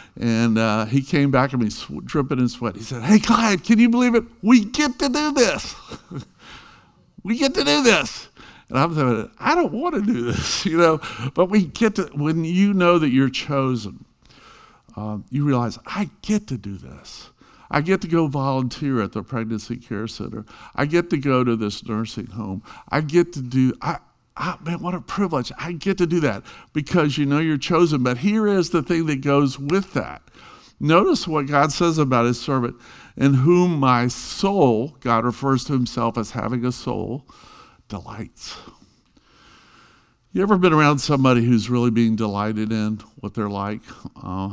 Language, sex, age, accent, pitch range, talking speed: English, male, 50-69, American, 110-170 Hz, 185 wpm